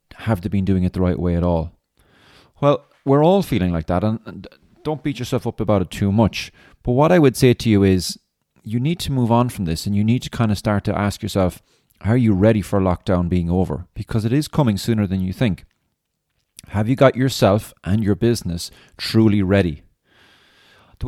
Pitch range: 95-115 Hz